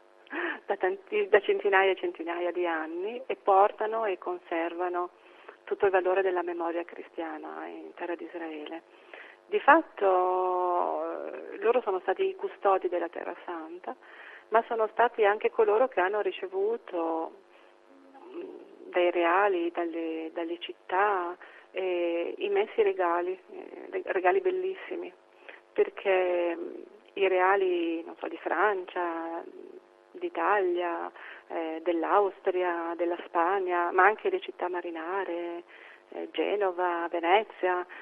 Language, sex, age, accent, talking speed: Italian, female, 40-59, native, 110 wpm